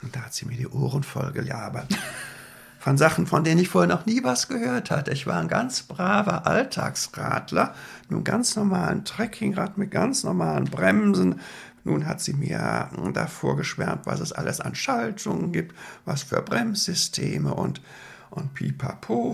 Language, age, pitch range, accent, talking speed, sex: German, 60-79, 125-190 Hz, German, 160 wpm, male